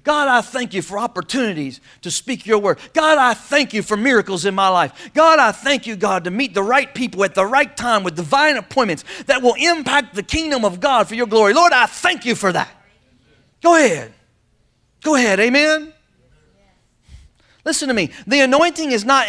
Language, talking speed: English, 200 wpm